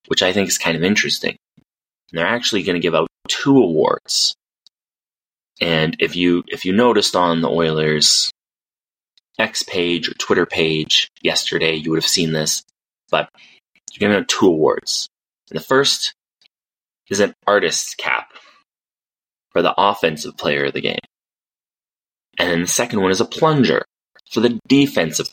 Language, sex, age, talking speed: English, male, 20-39, 160 wpm